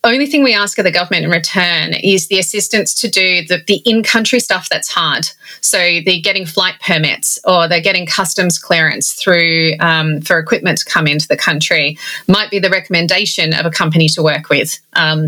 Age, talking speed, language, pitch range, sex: 30-49, 200 wpm, English, 165-195 Hz, female